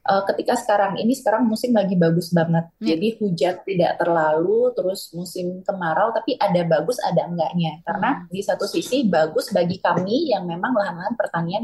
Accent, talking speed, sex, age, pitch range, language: native, 160 wpm, female, 20-39, 170-215 Hz, Indonesian